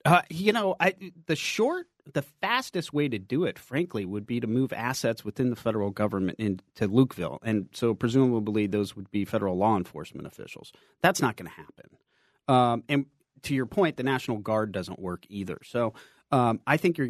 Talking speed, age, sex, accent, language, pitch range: 185 wpm, 40-59, male, American, English, 105-135 Hz